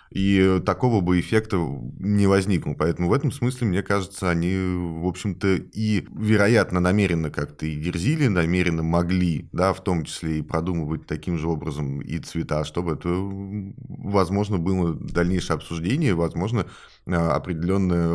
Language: Russian